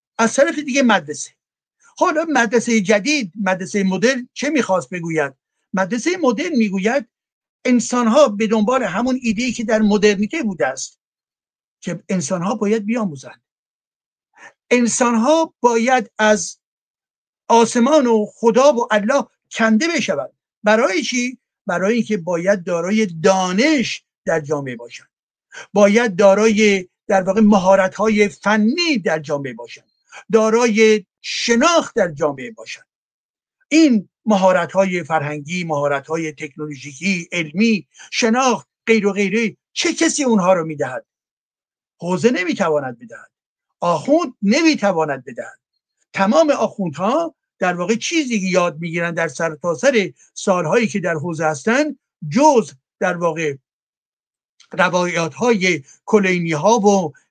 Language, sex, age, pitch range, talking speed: Persian, male, 60-79, 180-245 Hz, 110 wpm